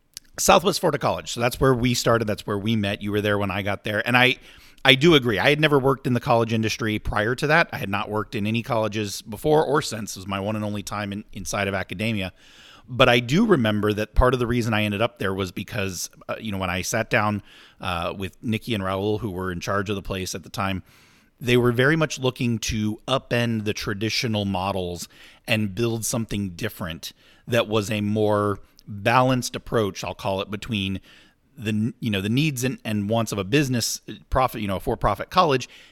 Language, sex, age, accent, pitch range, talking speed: English, male, 30-49, American, 100-120 Hz, 225 wpm